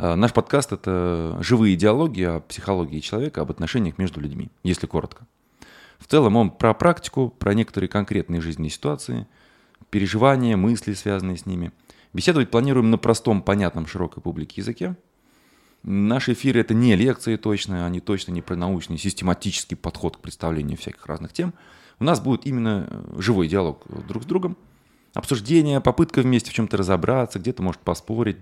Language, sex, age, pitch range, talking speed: Russian, male, 20-39, 90-120 Hz, 155 wpm